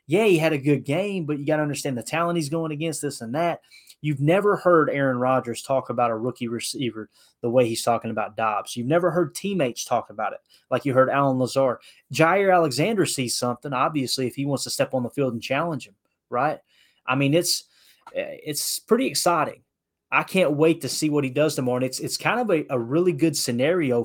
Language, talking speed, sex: English, 220 wpm, male